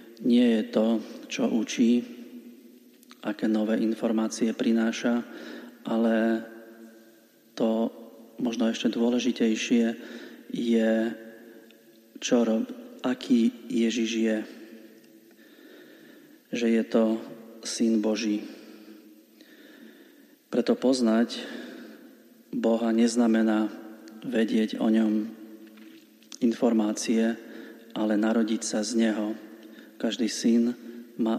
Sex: male